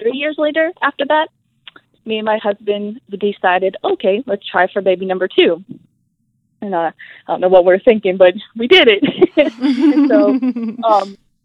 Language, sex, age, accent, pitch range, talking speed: English, female, 20-39, American, 185-235 Hz, 155 wpm